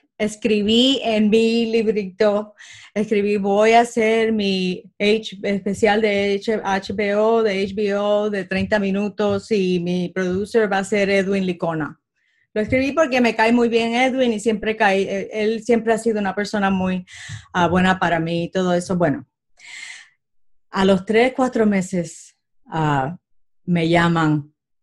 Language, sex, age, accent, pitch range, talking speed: Spanish, female, 30-49, American, 180-225 Hz, 145 wpm